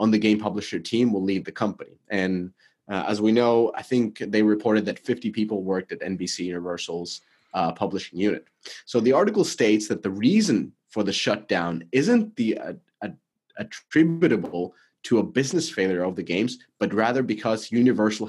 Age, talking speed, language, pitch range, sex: 30-49, 175 wpm, English, 95-125 Hz, male